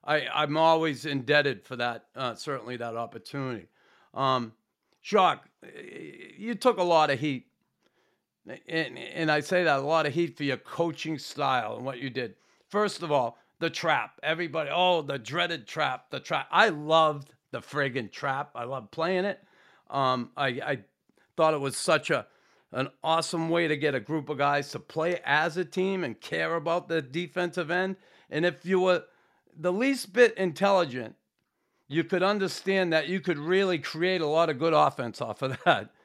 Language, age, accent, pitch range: English, 40-59, American, 145-185 Hz